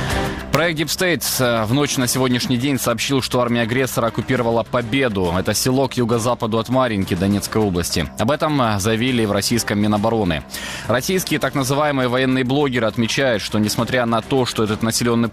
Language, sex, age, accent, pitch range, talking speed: Ukrainian, male, 20-39, native, 105-130 Hz, 155 wpm